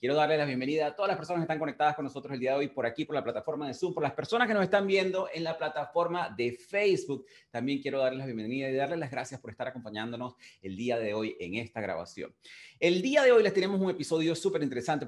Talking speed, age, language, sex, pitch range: 260 wpm, 30-49, Spanish, male, 125-175 Hz